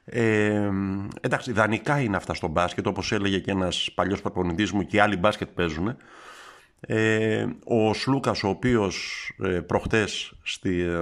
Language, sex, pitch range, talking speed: Greek, male, 90-120 Hz, 140 wpm